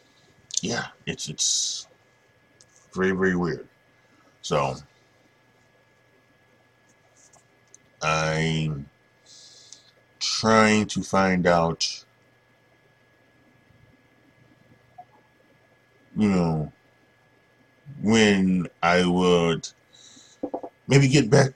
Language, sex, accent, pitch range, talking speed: English, male, American, 95-130 Hz, 55 wpm